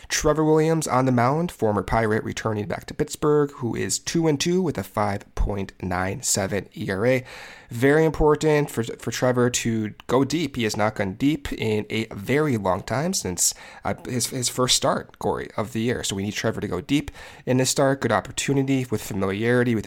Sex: male